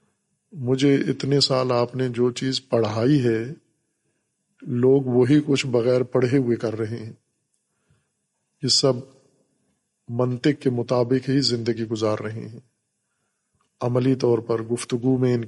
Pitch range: 120-135 Hz